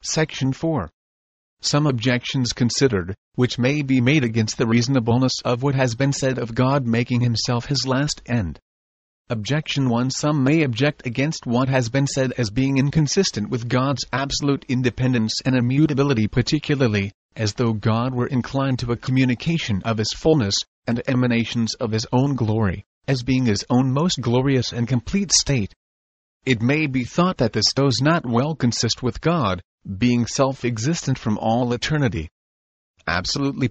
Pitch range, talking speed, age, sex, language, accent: 115-140 Hz, 160 wpm, 30-49, male, English, American